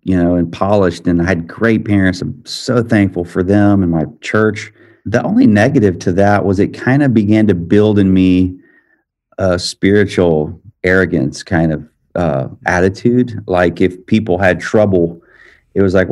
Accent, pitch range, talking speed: American, 85-100 Hz, 170 wpm